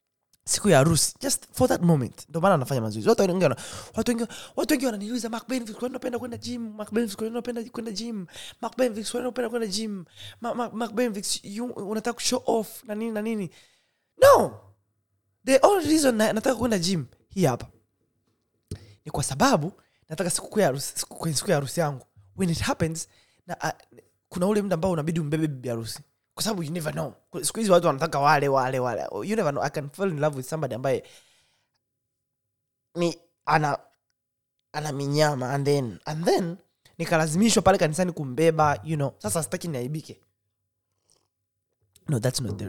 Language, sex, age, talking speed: Swahili, male, 20-39, 85 wpm